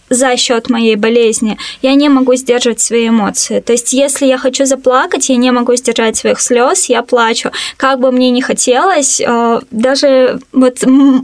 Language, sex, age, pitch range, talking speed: Russian, female, 20-39, 245-275 Hz, 165 wpm